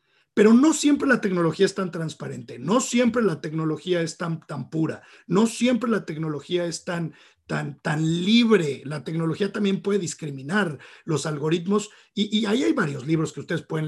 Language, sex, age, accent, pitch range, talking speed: Spanish, male, 50-69, Mexican, 150-200 Hz, 175 wpm